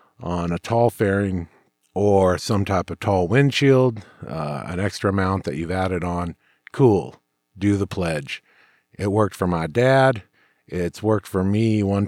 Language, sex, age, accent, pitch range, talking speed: English, male, 50-69, American, 95-120 Hz, 160 wpm